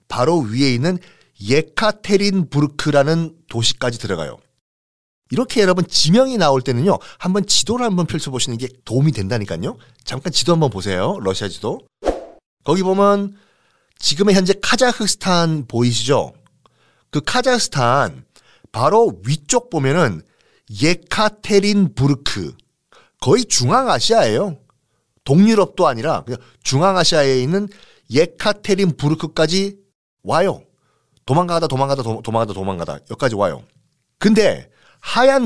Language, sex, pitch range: Korean, male, 130-195 Hz